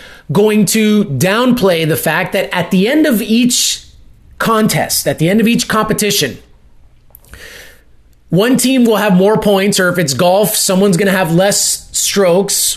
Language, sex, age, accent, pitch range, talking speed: English, male, 30-49, American, 170-210 Hz, 160 wpm